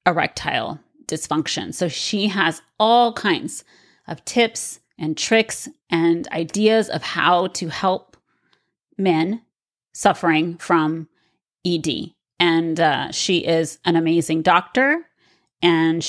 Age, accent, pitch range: 30-49, American, 165-200 Hz